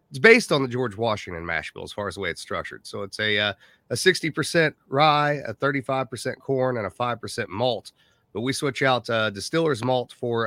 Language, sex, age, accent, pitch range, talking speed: English, male, 30-49, American, 120-145 Hz, 205 wpm